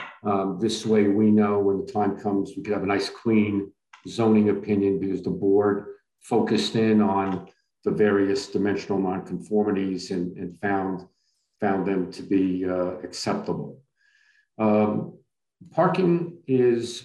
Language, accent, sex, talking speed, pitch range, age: English, American, male, 135 wpm, 100-130 Hz, 50-69